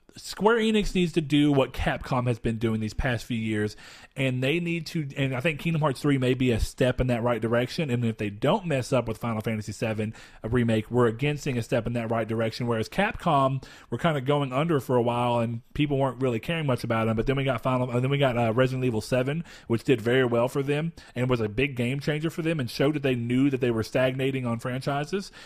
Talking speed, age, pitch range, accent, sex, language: 255 wpm, 40-59, 120-140 Hz, American, male, English